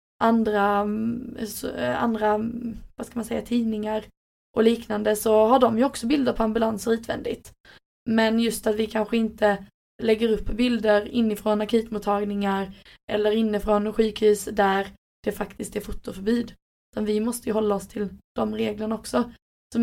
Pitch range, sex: 210-235 Hz, female